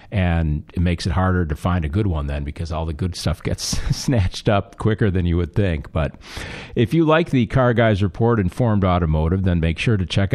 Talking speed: 225 wpm